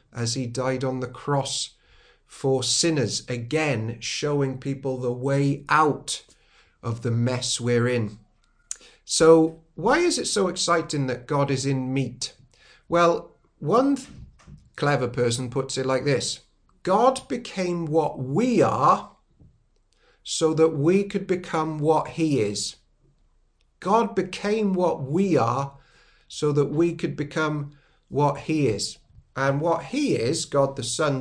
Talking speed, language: 135 wpm, English